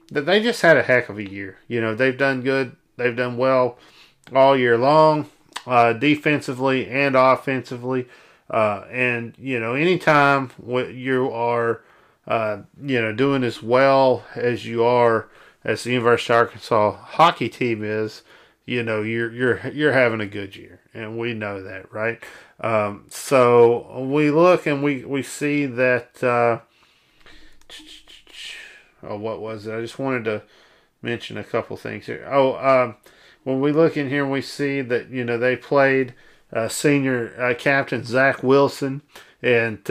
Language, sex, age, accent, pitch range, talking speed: English, male, 40-59, American, 115-130 Hz, 160 wpm